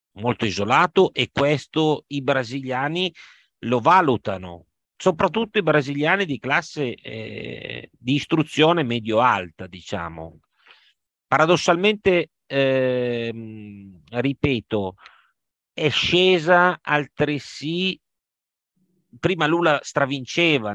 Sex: male